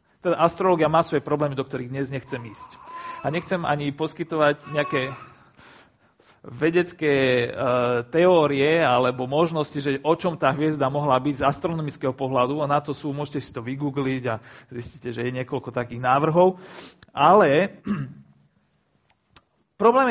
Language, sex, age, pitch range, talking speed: Slovak, male, 40-59, 145-195 Hz, 135 wpm